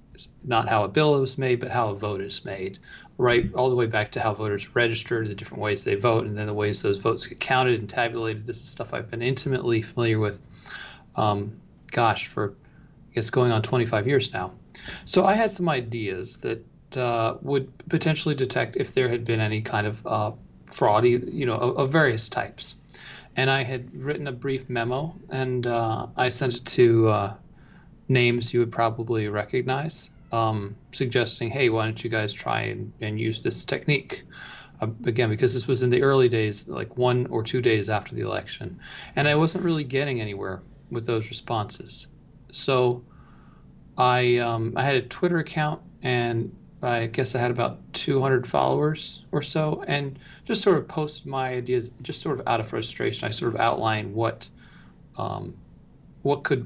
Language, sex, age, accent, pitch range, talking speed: English, male, 40-59, American, 110-135 Hz, 185 wpm